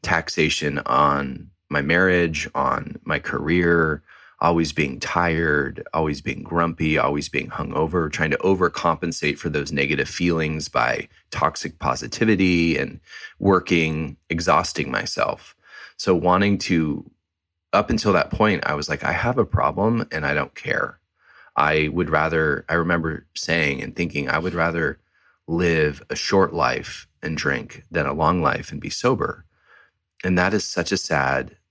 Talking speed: 150 wpm